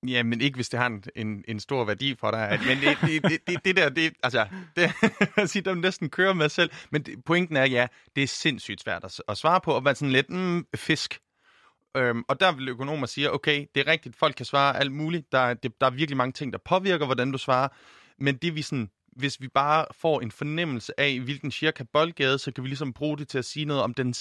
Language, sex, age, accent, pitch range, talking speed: Danish, male, 30-49, native, 120-150 Hz, 255 wpm